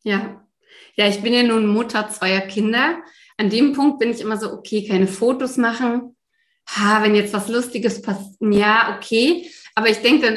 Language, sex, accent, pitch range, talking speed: German, female, German, 200-240 Hz, 185 wpm